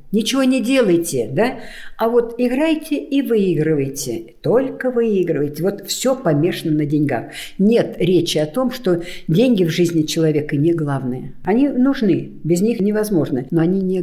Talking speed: 150 wpm